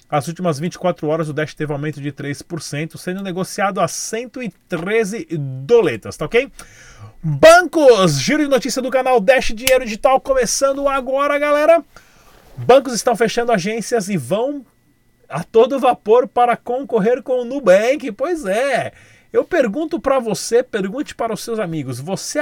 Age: 30-49